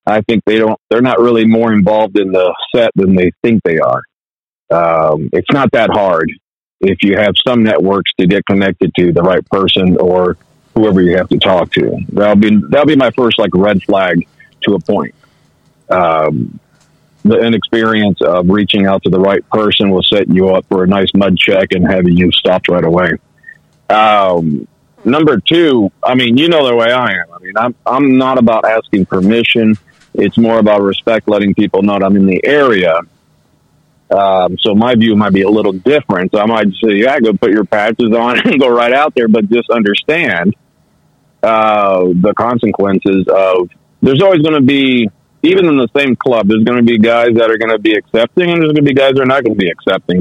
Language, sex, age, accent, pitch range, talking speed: English, male, 50-69, American, 95-115 Hz, 210 wpm